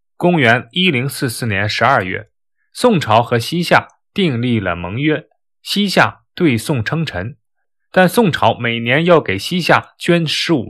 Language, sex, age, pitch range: Chinese, male, 20-39, 110-170 Hz